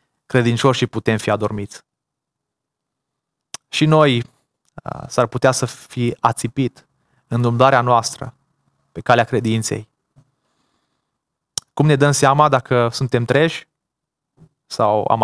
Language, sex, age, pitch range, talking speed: Romanian, male, 20-39, 115-145 Hz, 105 wpm